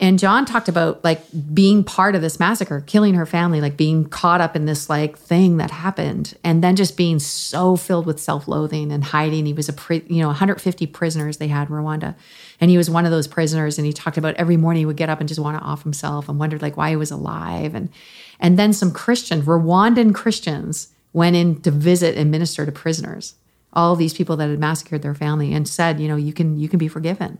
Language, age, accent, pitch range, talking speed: English, 40-59, American, 155-180 Hz, 230 wpm